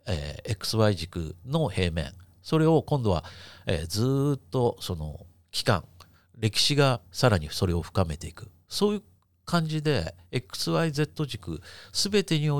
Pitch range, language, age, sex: 90-140 Hz, Japanese, 50-69, male